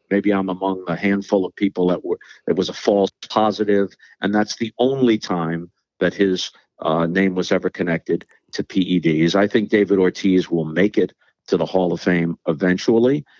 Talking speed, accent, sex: 185 wpm, American, male